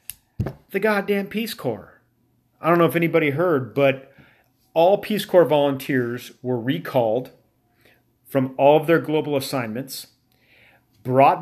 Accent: American